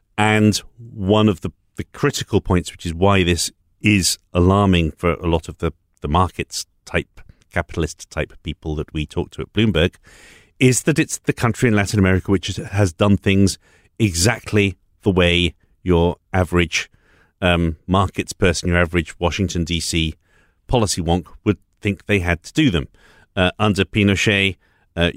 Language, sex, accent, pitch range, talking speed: English, male, British, 85-105 Hz, 155 wpm